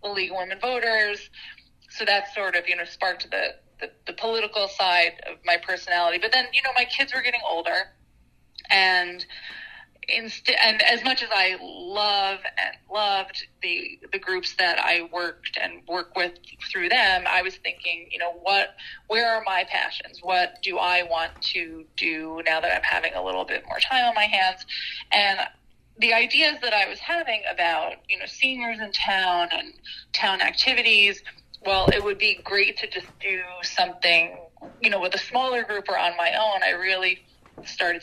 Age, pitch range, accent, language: 20-39, 180-245 Hz, American, English